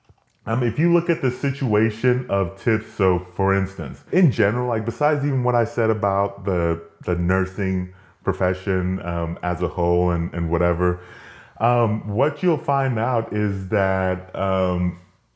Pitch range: 90-125 Hz